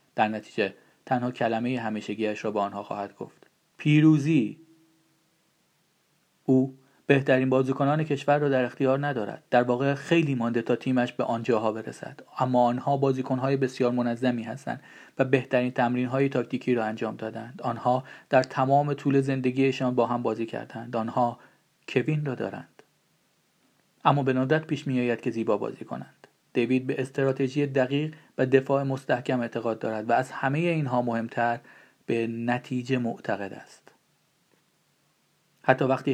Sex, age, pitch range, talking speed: male, 40-59, 120-140 Hz, 140 wpm